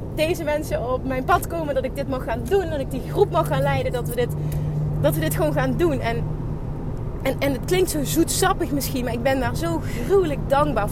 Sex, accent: female, Dutch